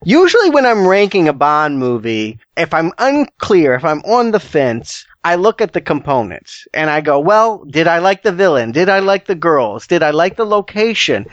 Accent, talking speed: American, 205 wpm